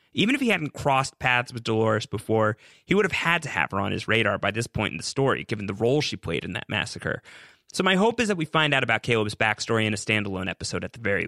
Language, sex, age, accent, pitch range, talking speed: English, male, 30-49, American, 105-140 Hz, 270 wpm